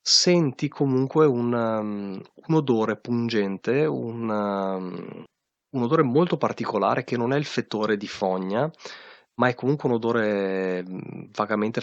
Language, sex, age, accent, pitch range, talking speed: Italian, male, 30-49, native, 95-120 Hz, 120 wpm